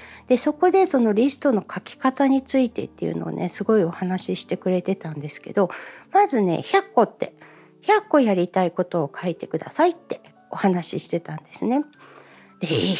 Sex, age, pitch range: female, 60-79, 180-270 Hz